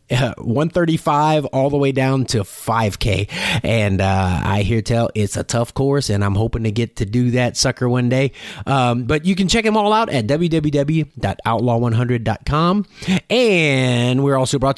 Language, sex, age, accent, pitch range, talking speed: English, male, 30-49, American, 115-155 Hz, 170 wpm